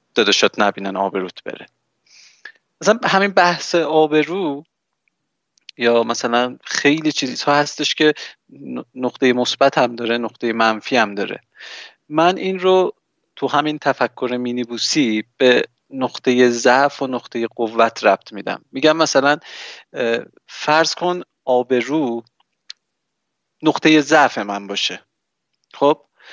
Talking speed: 110 wpm